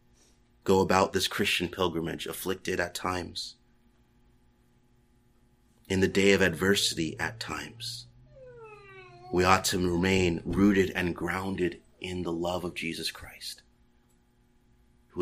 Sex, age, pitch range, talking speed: male, 30-49, 90-120 Hz, 115 wpm